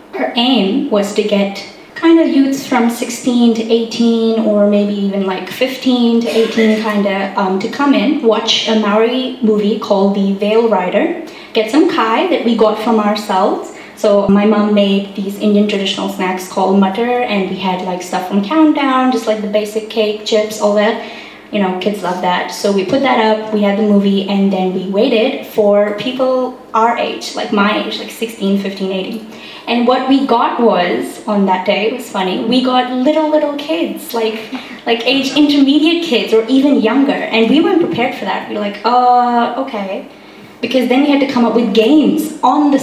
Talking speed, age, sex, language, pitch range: 200 wpm, 20-39, female, English, 205-255 Hz